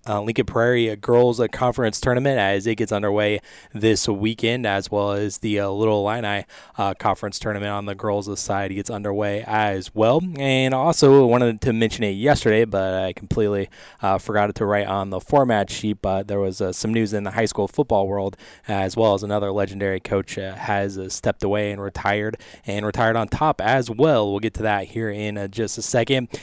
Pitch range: 100-120 Hz